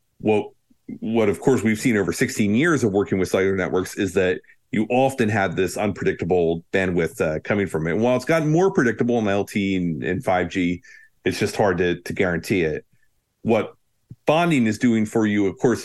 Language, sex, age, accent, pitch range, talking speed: English, male, 40-59, American, 90-115 Hz, 190 wpm